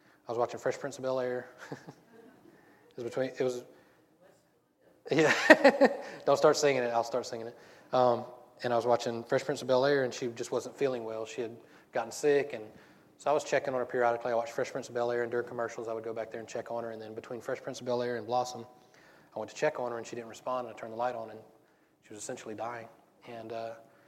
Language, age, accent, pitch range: English, 20-39, American, 115-125 Hz